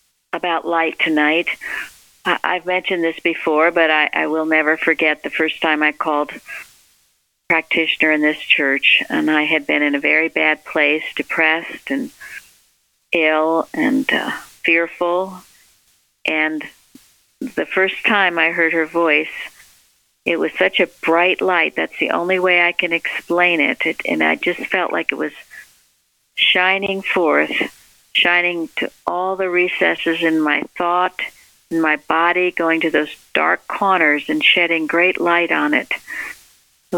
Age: 60-79